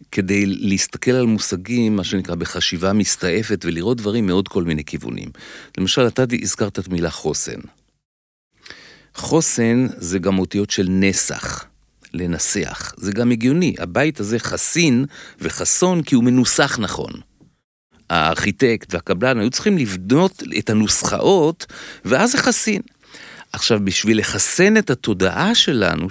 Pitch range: 95-150 Hz